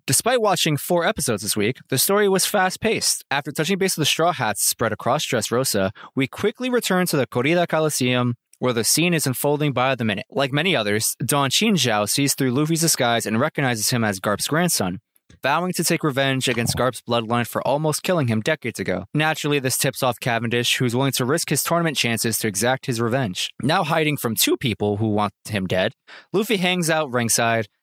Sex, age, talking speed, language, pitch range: male, 20-39, 200 wpm, English, 115-155 Hz